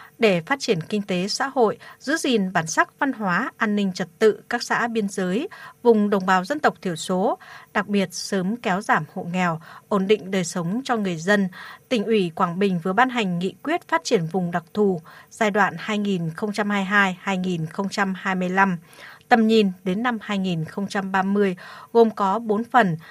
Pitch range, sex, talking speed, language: 185-235 Hz, female, 175 wpm, Vietnamese